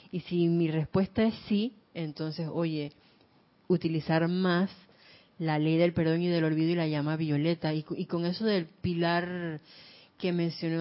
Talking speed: 160 wpm